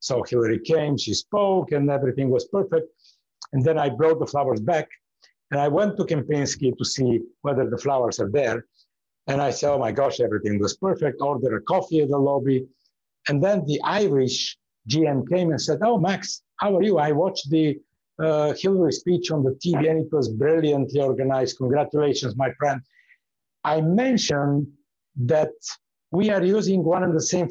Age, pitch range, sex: 60-79, 135-180 Hz, male